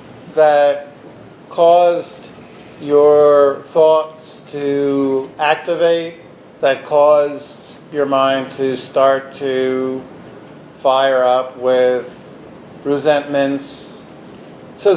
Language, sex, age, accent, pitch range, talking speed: English, male, 50-69, American, 135-155 Hz, 70 wpm